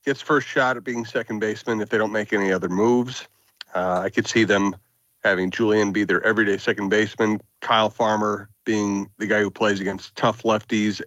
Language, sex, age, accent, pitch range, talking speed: English, male, 40-59, American, 105-120 Hz, 195 wpm